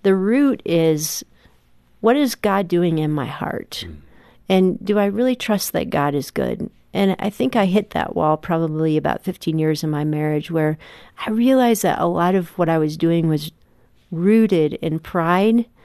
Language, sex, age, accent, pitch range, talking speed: English, female, 40-59, American, 160-195 Hz, 180 wpm